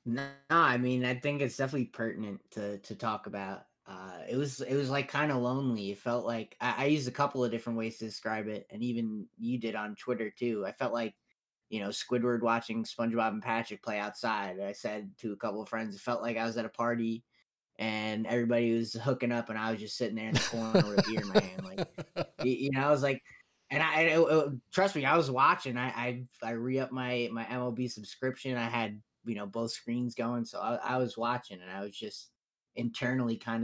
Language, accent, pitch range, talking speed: English, American, 110-130 Hz, 235 wpm